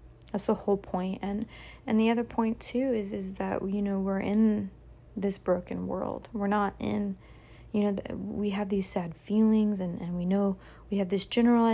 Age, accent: 30-49, American